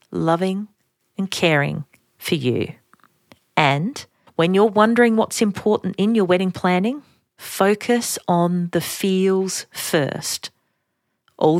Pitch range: 170-215 Hz